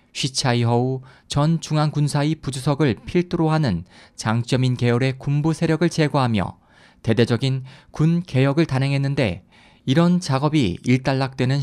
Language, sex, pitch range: Korean, male, 110-155 Hz